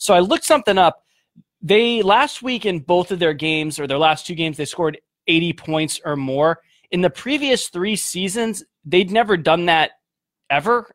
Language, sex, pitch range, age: English, male, 140-175 Hz, 20-39